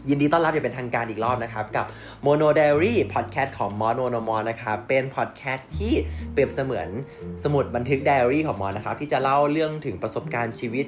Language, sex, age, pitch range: Thai, male, 20-39, 100-125 Hz